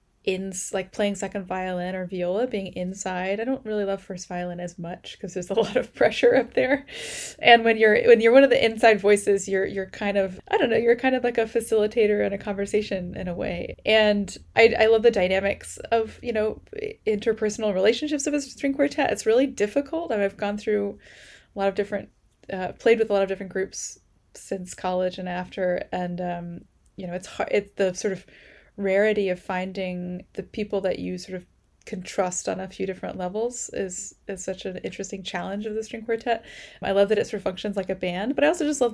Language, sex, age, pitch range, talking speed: English, female, 20-39, 185-220 Hz, 220 wpm